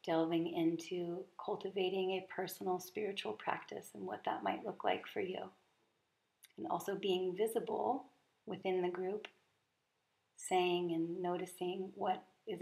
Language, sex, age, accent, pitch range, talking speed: English, female, 40-59, American, 170-195 Hz, 130 wpm